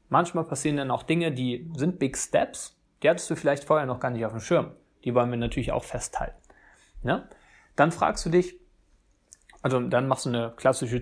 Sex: male